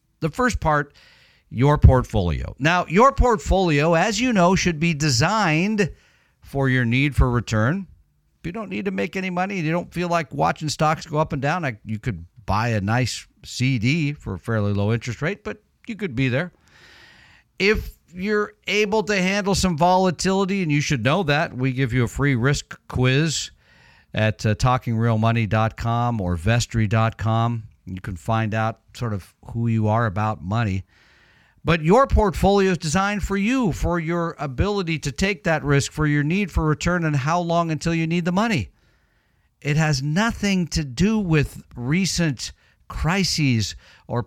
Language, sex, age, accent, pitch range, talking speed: English, male, 50-69, American, 115-175 Hz, 170 wpm